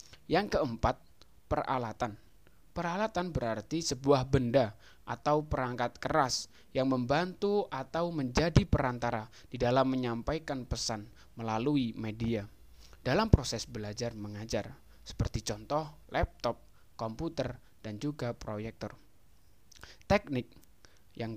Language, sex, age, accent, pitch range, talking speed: Indonesian, male, 20-39, native, 110-145 Hz, 95 wpm